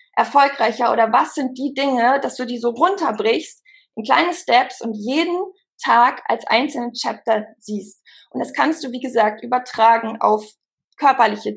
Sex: female